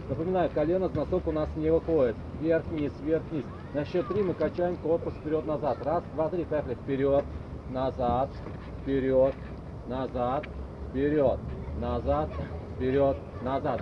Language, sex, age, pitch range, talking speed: Russian, male, 30-49, 135-170 Hz, 125 wpm